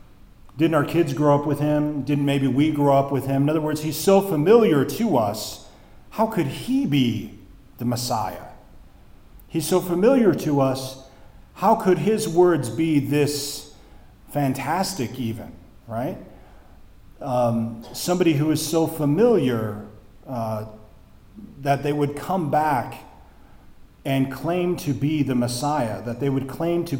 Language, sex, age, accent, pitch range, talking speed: English, male, 40-59, American, 120-155 Hz, 145 wpm